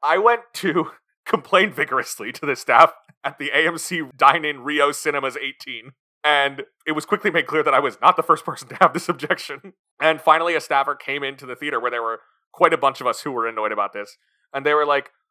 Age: 30-49